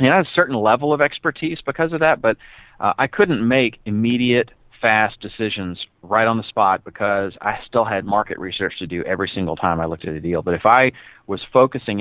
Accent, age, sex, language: American, 40-59, male, English